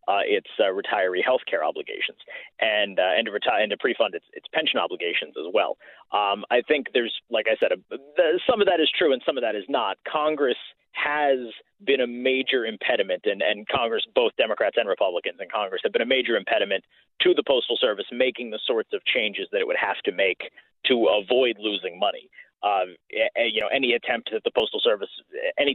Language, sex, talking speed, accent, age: English, male, 210 wpm, American, 30-49